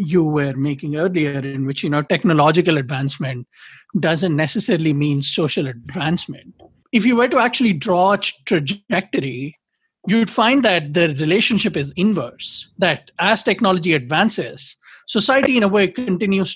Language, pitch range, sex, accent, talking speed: English, 160-210 Hz, male, Indian, 140 wpm